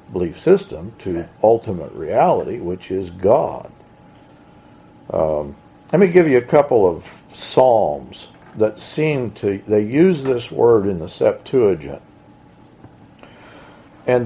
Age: 50-69